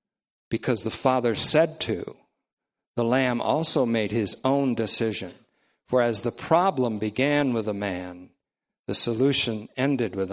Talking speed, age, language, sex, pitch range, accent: 140 wpm, 50-69, English, male, 105-135 Hz, American